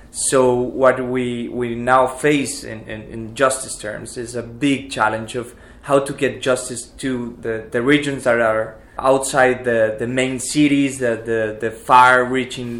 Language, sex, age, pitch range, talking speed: English, male, 20-39, 120-140 Hz, 165 wpm